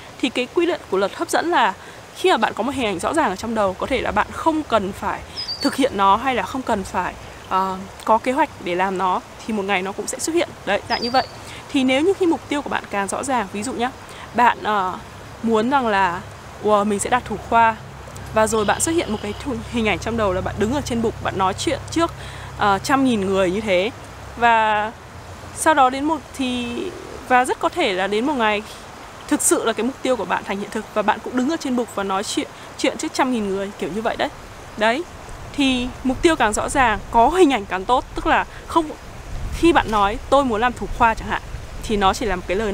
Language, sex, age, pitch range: Vietnamese, female, 20-39, 205-270 Hz